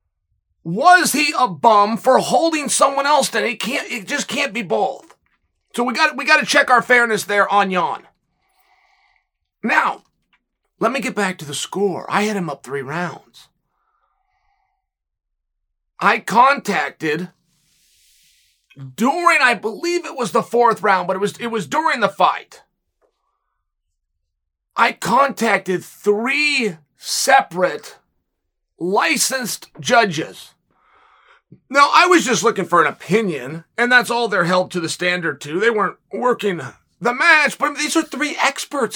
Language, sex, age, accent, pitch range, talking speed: English, male, 30-49, American, 175-285 Hz, 145 wpm